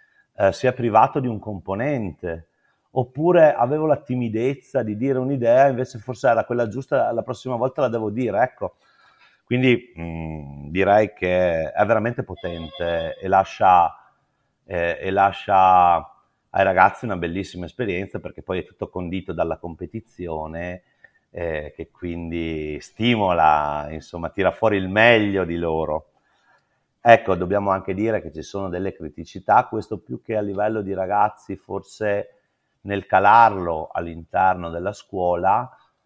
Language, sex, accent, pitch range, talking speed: Italian, male, native, 85-115 Hz, 140 wpm